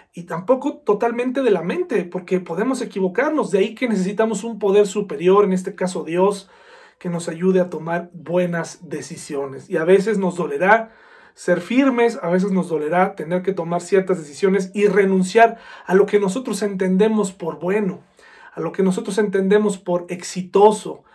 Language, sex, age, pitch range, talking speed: Spanish, male, 40-59, 175-205 Hz, 165 wpm